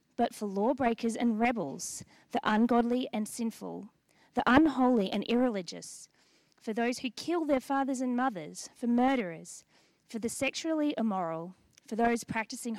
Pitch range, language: 200-255 Hz, English